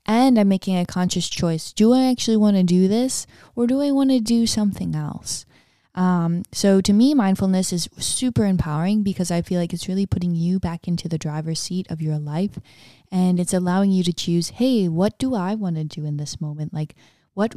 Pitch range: 165-200 Hz